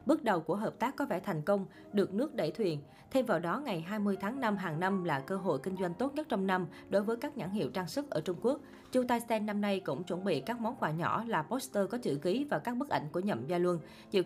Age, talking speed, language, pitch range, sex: 20-39, 280 wpm, Vietnamese, 170-230 Hz, female